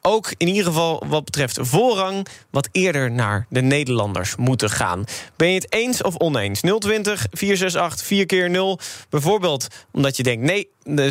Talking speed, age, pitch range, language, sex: 160 wpm, 20-39, 120-165 Hz, Dutch, male